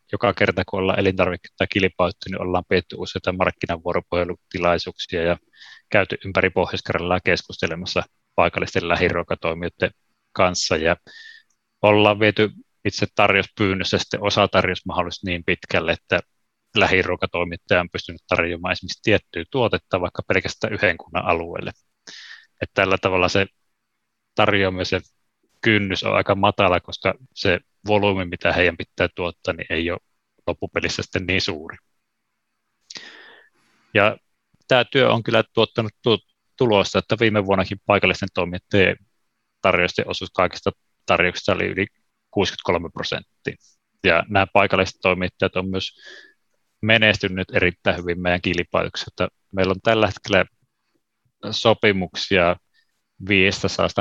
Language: Finnish